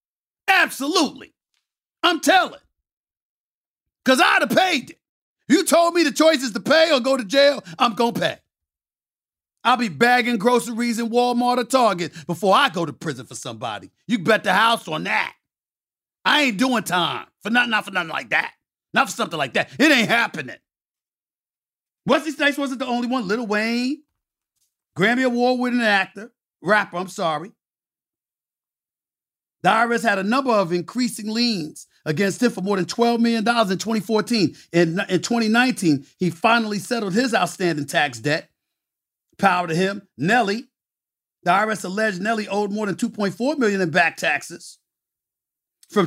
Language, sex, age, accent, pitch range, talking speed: English, male, 50-69, American, 185-245 Hz, 160 wpm